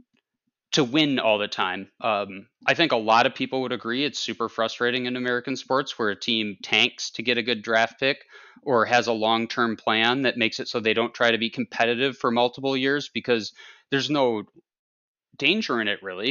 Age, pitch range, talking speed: 30-49, 110-155 Hz, 200 wpm